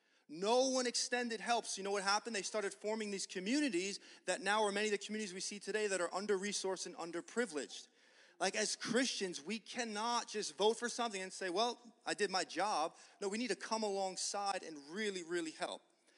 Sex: male